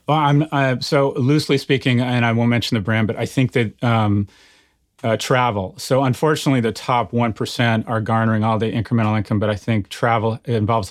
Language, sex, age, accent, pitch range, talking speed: English, male, 30-49, American, 105-120 Hz, 195 wpm